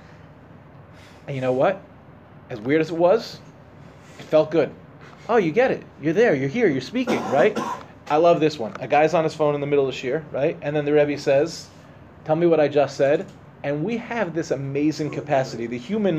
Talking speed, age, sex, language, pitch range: 210 wpm, 30-49, male, English, 145-185 Hz